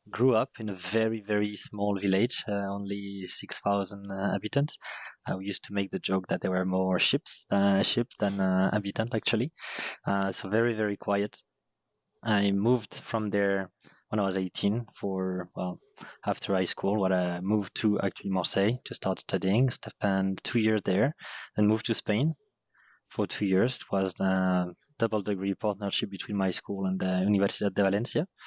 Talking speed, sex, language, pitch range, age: 175 wpm, male, English, 100-115 Hz, 20-39